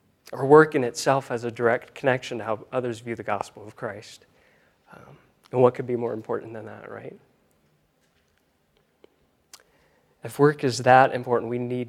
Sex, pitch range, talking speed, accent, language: male, 110-125 Hz, 165 wpm, American, English